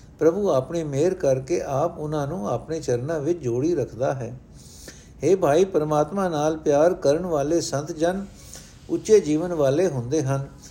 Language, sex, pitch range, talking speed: Punjabi, male, 135-180 Hz, 150 wpm